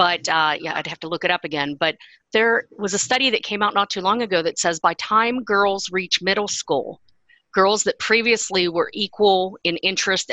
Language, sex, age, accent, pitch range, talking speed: English, female, 40-59, American, 155-195 Hz, 215 wpm